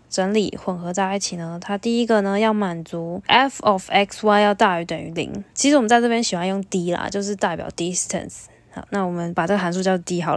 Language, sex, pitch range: Chinese, female, 180-220 Hz